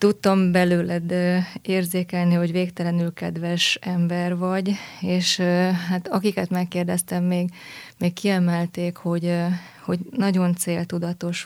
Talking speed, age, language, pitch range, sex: 100 wpm, 20-39, Hungarian, 175-185 Hz, female